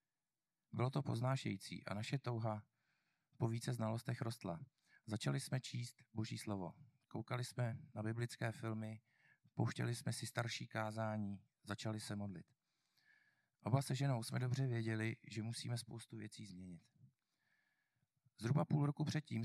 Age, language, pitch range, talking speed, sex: 40-59, Czech, 110-135 Hz, 135 wpm, male